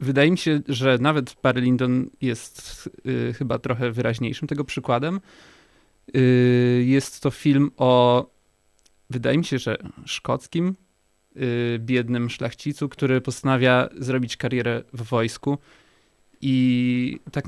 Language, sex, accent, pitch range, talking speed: Polish, male, native, 125-135 Hz, 115 wpm